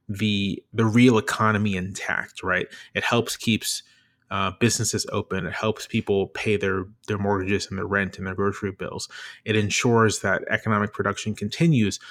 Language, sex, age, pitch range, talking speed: English, male, 30-49, 95-110 Hz, 160 wpm